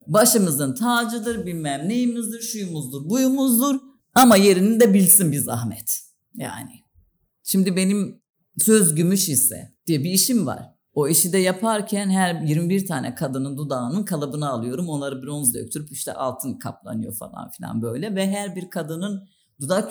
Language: Turkish